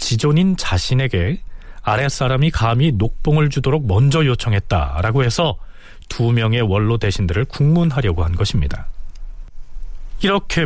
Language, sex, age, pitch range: Korean, male, 40-59, 100-160 Hz